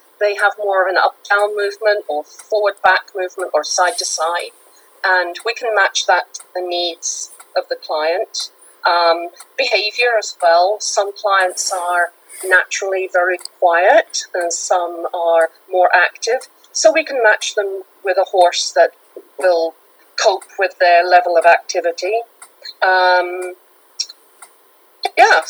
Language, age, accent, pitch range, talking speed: English, 40-59, British, 175-230 Hz, 130 wpm